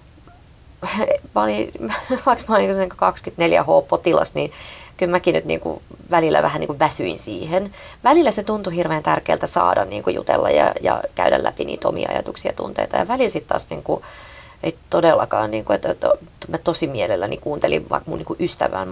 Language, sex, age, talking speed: Finnish, female, 30-49, 180 wpm